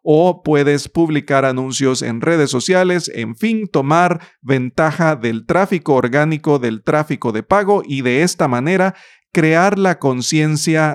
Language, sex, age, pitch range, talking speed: Spanish, male, 40-59, 125-170 Hz, 135 wpm